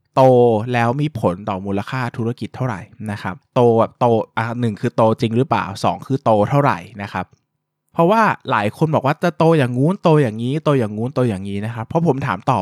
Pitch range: 115-150 Hz